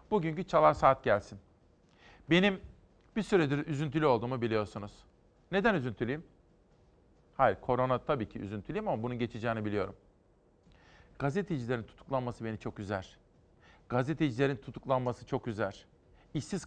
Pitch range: 120-160 Hz